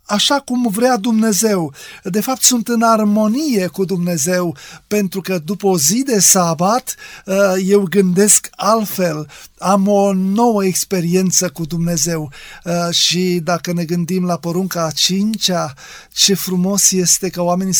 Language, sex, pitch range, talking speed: Romanian, male, 175-210 Hz, 135 wpm